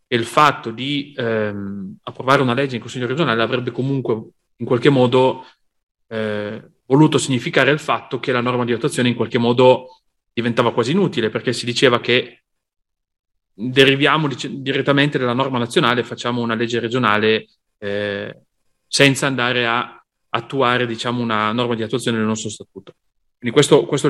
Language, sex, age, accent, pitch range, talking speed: Italian, male, 30-49, native, 110-135 Hz, 155 wpm